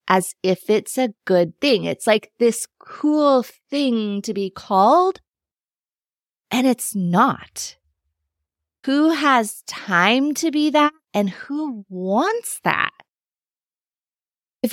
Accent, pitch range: American, 195-270 Hz